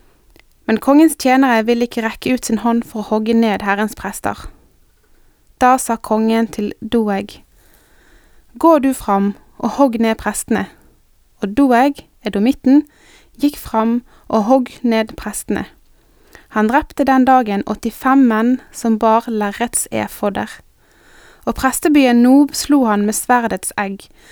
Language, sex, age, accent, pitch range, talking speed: Danish, female, 20-39, Swedish, 215-265 Hz, 135 wpm